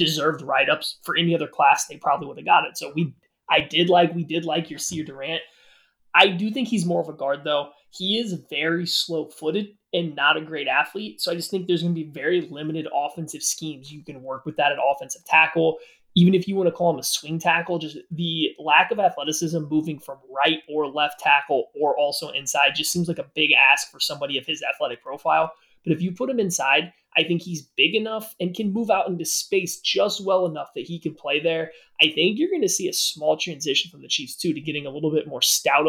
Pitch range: 150-175 Hz